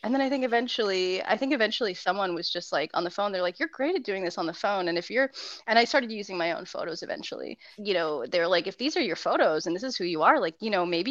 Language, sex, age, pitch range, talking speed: English, female, 20-39, 180-240 Hz, 295 wpm